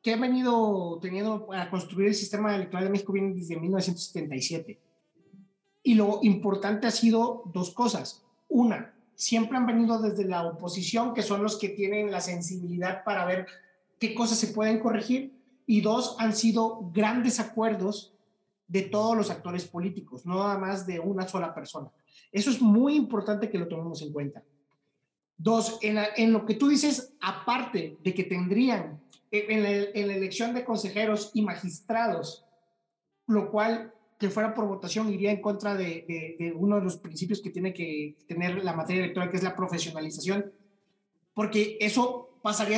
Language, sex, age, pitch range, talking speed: Spanish, male, 30-49, 185-225 Hz, 170 wpm